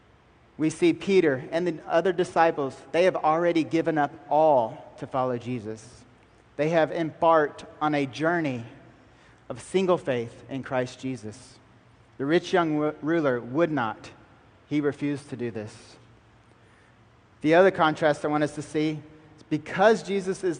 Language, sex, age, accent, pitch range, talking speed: English, male, 30-49, American, 120-160 Hz, 150 wpm